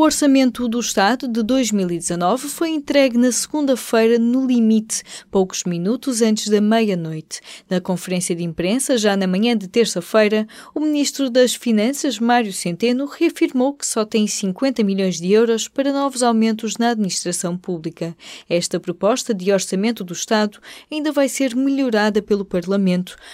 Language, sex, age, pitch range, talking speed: Portuguese, female, 20-39, 185-250 Hz, 150 wpm